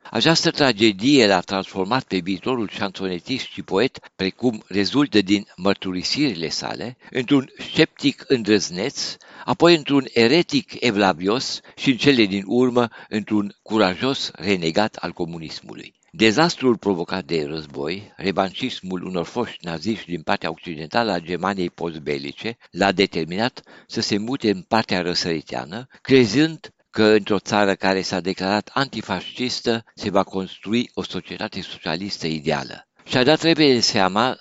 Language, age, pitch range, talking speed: Romanian, 60-79, 95-125 Hz, 125 wpm